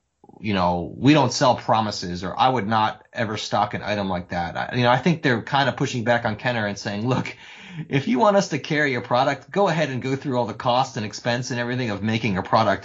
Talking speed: 255 wpm